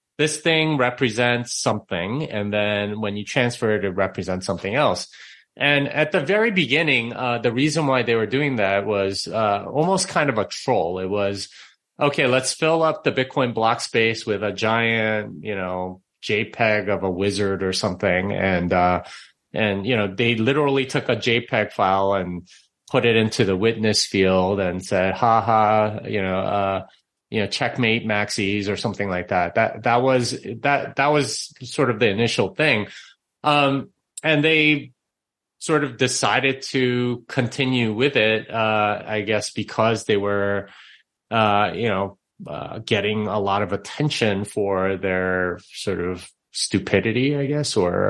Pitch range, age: 100-130 Hz, 30-49